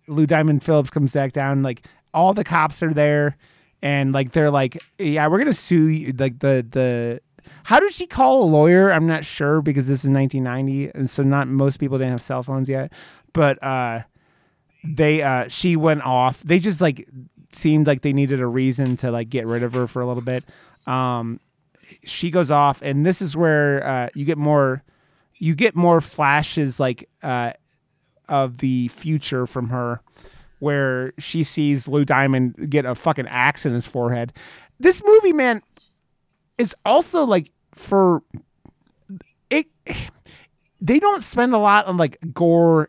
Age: 30-49